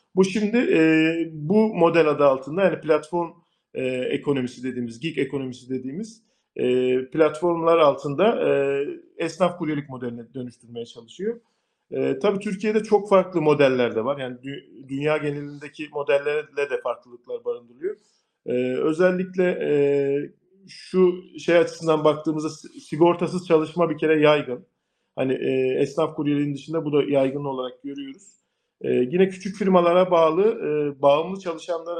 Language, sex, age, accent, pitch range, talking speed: Turkish, male, 40-59, native, 140-185 Hz, 130 wpm